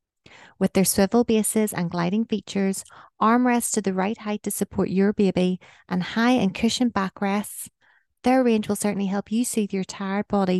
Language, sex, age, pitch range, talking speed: English, female, 30-49, 185-225 Hz, 175 wpm